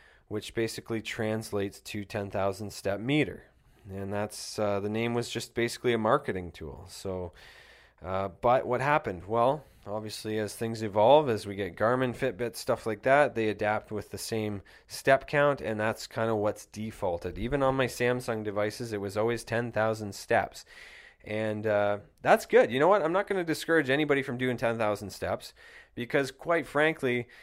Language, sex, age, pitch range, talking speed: English, male, 20-39, 100-130 Hz, 170 wpm